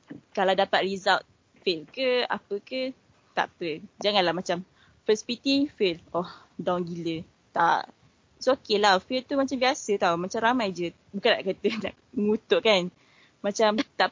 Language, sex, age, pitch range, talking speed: Malay, female, 20-39, 185-235 Hz, 160 wpm